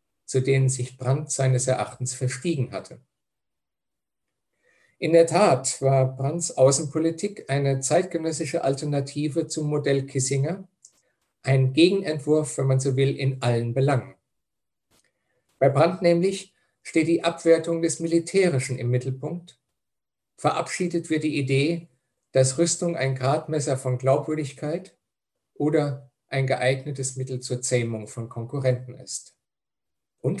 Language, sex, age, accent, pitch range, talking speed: German, male, 50-69, German, 130-165 Hz, 115 wpm